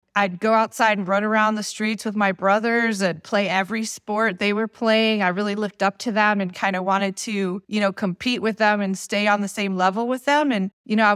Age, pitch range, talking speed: 30-49, 190-225 Hz, 245 wpm